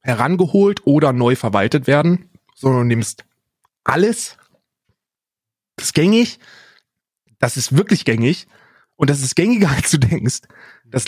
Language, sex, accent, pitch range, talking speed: German, male, German, 120-170 Hz, 130 wpm